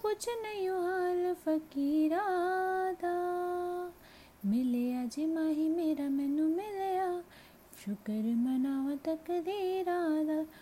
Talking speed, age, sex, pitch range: 95 wpm, 20-39, female, 310-360 Hz